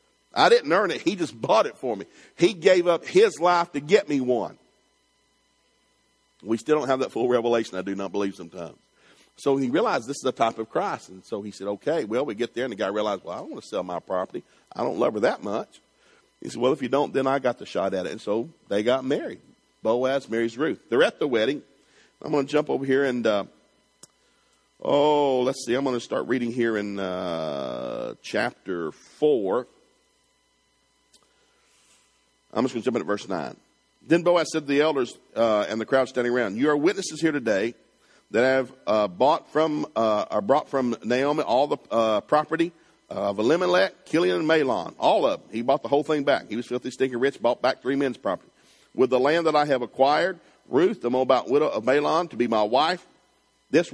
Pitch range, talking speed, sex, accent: 115-150 Hz, 220 wpm, male, American